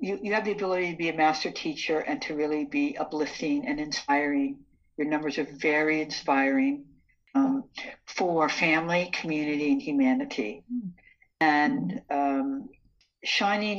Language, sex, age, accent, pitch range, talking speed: English, female, 60-79, American, 150-225 Hz, 135 wpm